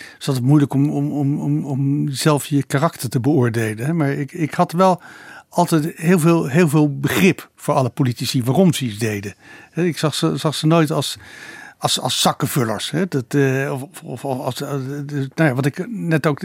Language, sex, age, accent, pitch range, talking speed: Dutch, male, 60-79, Dutch, 135-160 Hz, 185 wpm